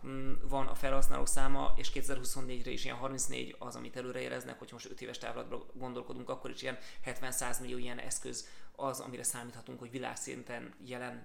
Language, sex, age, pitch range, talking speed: Hungarian, male, 30-49, 120-135 Hz, 160 wpm